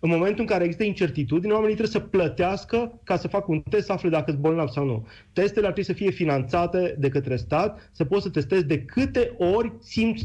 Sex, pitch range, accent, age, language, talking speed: male, 150-205 Hz, native, 30-49, Romanian, 230 wpm